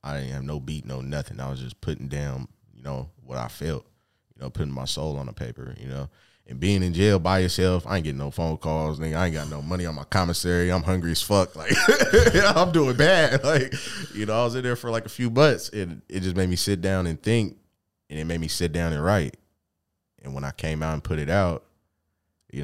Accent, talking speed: American, 250 wpm